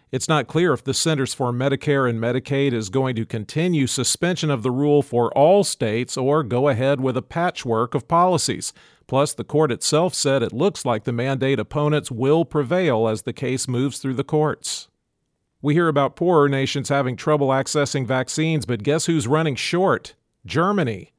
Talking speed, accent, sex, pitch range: 180 wpm, American, male, 120-150 Hz